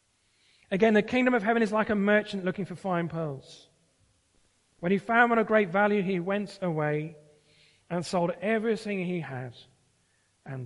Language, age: English, 40-59